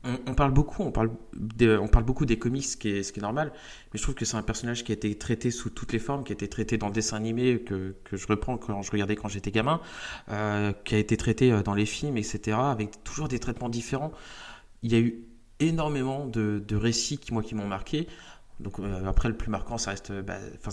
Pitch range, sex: 105-125 Hz, male